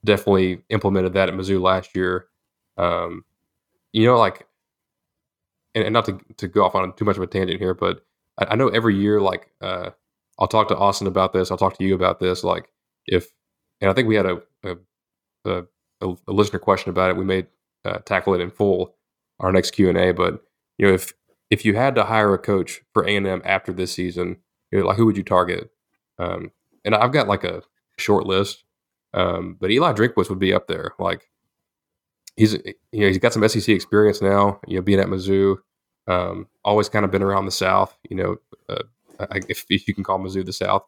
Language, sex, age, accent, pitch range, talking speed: English, male, 20-39, American, 95-105 Hz, 210 wpm